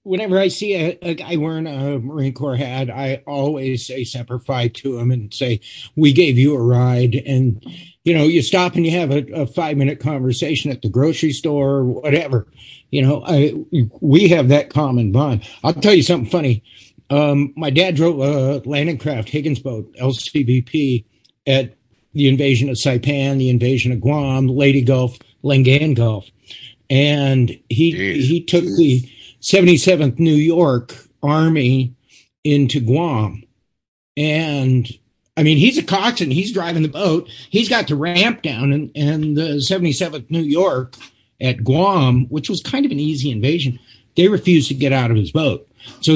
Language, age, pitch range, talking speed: English, 50-69, 125-165 Hz, 170 wpm